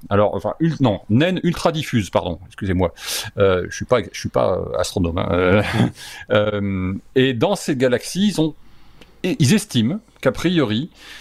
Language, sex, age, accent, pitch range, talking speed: French, male, 40-59, French, 105-155 Hz, 140 wpm